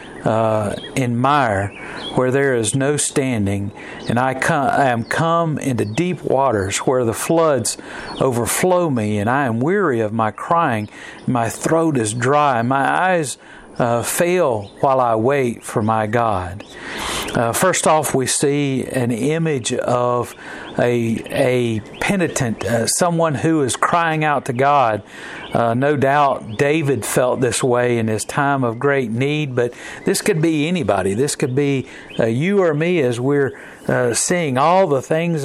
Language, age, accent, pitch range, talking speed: English, 50-69, American, 120-155 Hz, 160 wpm